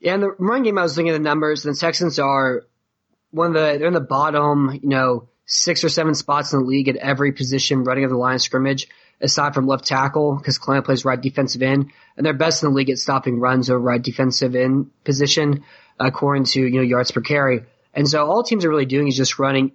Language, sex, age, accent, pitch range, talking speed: English, male, 20-39, American, 130-145 Hz, 245 wpm